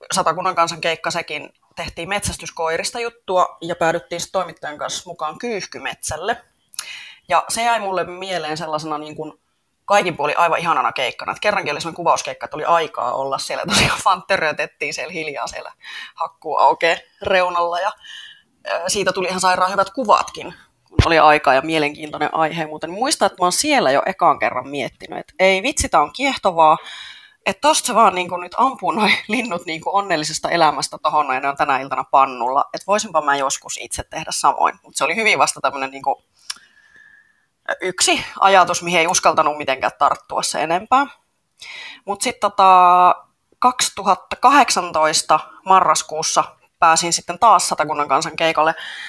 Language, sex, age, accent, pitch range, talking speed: Finnish, female, 30-49, native, 155-200 Hz, 145 wpm